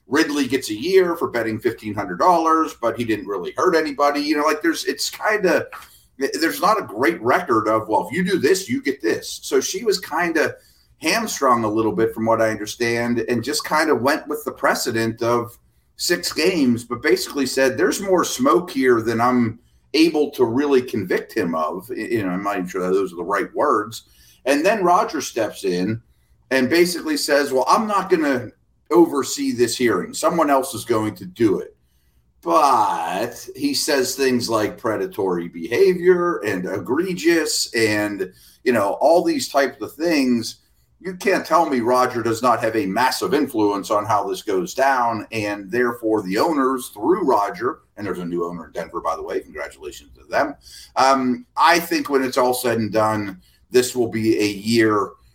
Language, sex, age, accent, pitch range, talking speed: English, male, 30-49, American, 110-185 Hz, 190 wpm